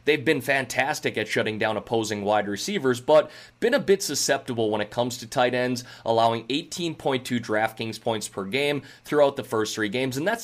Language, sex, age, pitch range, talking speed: English, male, 30-49, 115-145 Hz, 190 wpm